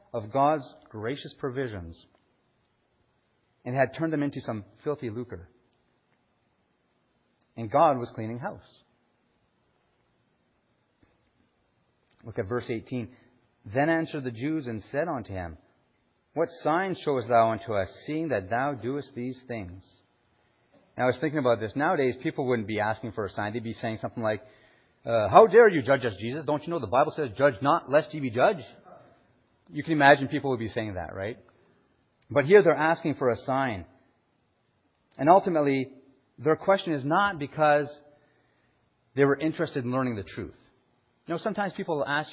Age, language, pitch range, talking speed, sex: 40-59, English, 115-150 Hz, 165 wpm, male